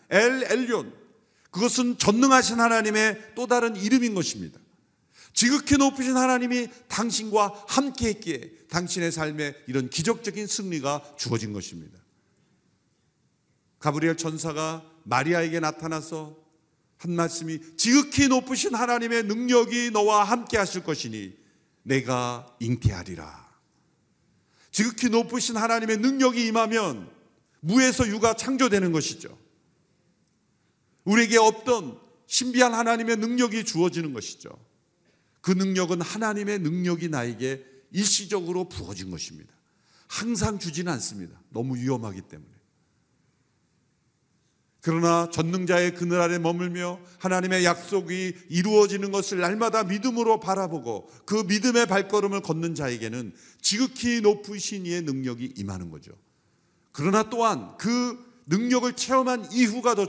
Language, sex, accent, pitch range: Korean, male, native, 160-230 Hz